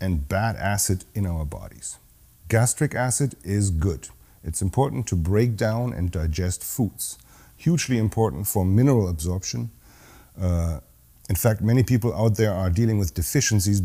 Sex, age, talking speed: male, 40-59, 145 wpm